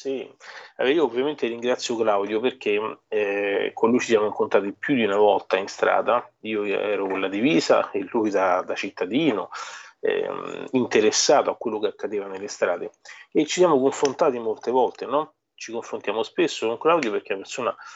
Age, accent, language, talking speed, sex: 30-49, native, Italian, 170 wpm, male